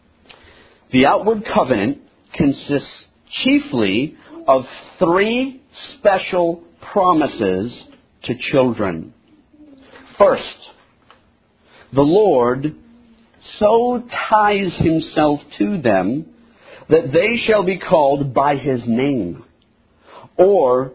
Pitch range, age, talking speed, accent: 140-195 Hz, 50-69, 80 wpm, American